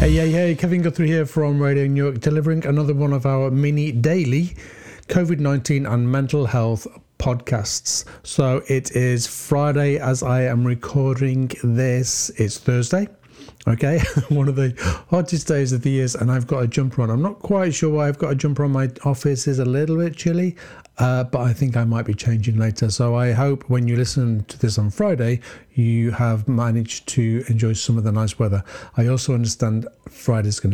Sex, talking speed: male, 195 wpm